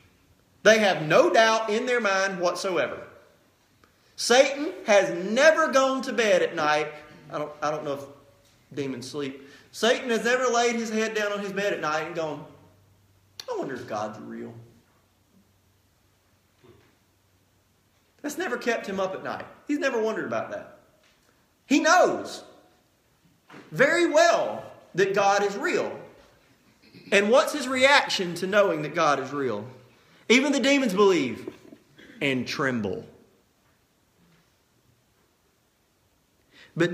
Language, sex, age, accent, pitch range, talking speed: English, male, 40-59, American, 150-255 Hz, 130 wpm